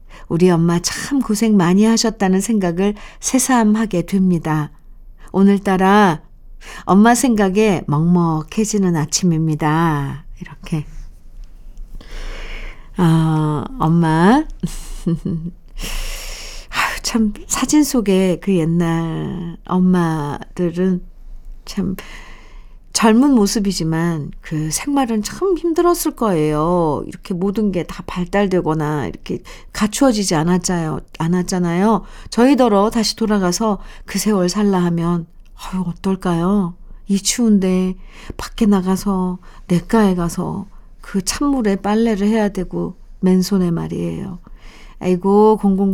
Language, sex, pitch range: Korean, female, 165-205 Hz